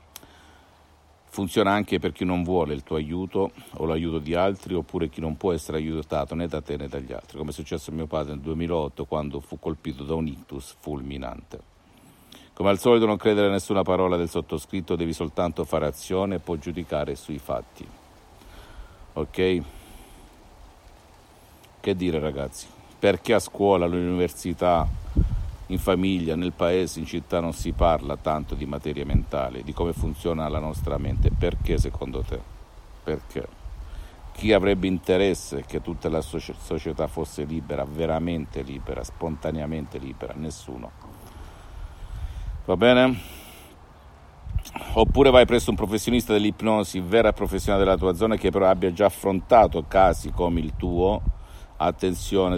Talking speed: 145 wpm